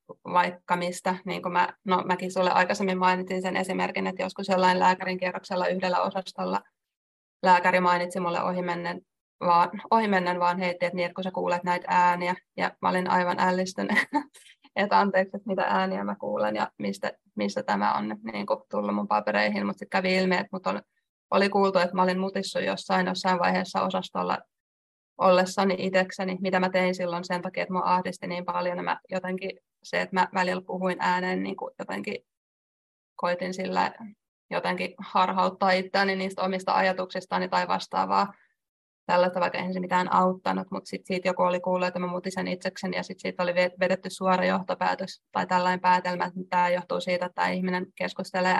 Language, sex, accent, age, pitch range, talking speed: Finnish, female, native, 20-39, 175-185 Hz, 170 wpm